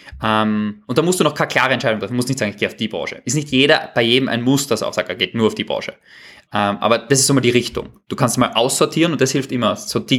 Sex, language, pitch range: male, German, 110-130 Hz